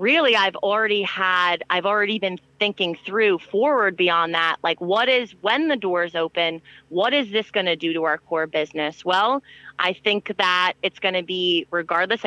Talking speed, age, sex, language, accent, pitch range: 185 wpm, 30-49, female, English, American, 175-215 Hz